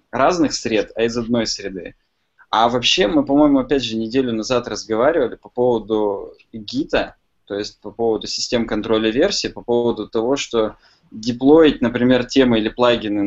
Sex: male